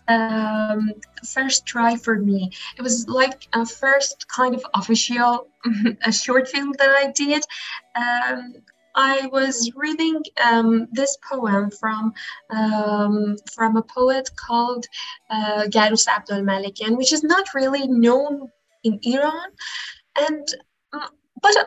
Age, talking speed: 20-39, 125 wpm